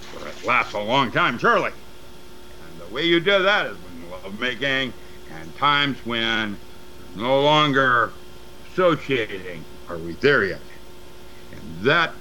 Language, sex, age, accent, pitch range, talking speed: English, male, 60-79, American, 95-140 Hz, 145 wpm